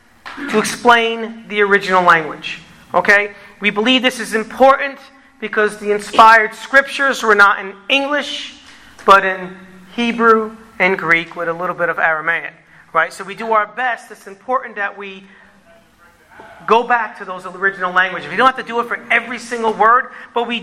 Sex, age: male, 40-59